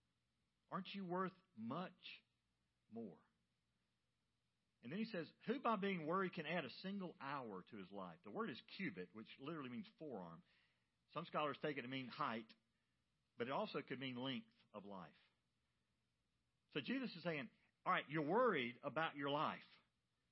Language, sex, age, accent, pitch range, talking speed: English, male, 50-69, American, 130-200 Hz, 160 wpm